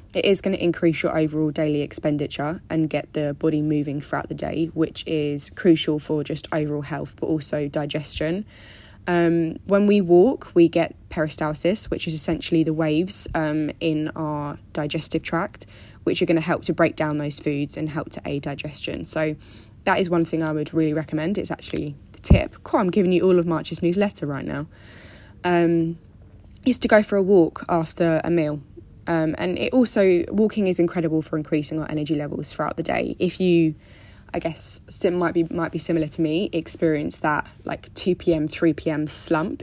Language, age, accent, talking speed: English, 10-29, British, 190 wpm